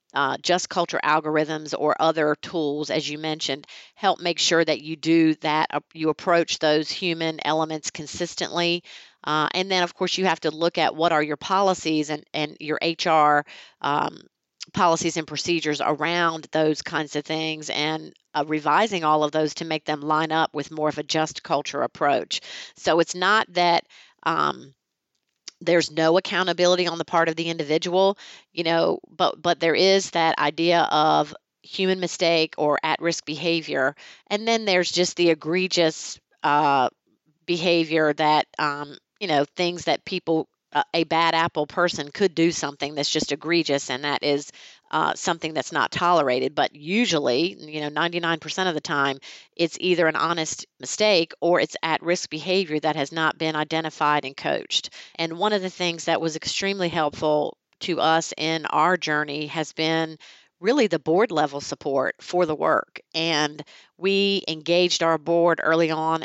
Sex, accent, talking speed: female, American, 165 wpm